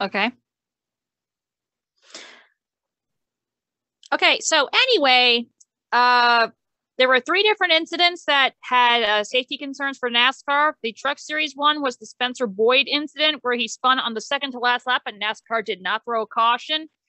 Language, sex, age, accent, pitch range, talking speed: English, female, 40-59, American, 225-285 Hz, 145 wpm